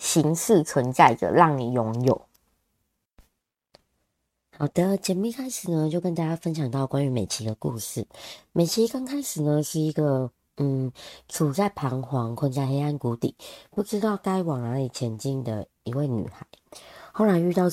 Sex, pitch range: male, 125-175 Hz